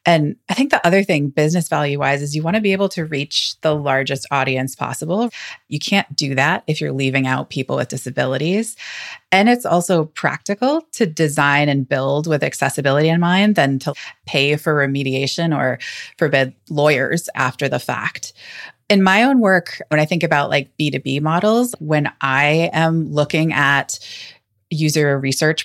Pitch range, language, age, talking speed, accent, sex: 140-170 Hz, English, 30-49, 170 wpm, American, female